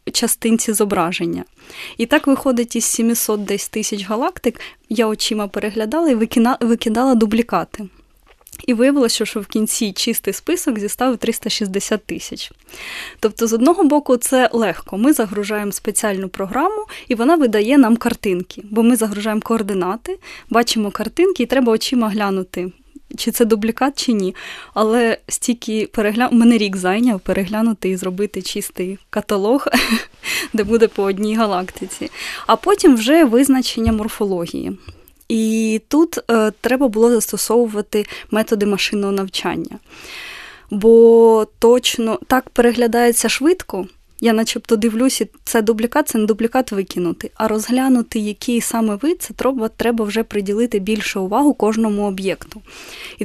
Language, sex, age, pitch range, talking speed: Ukrainian, female, 20-39, 210-250 Hz, 130 wpm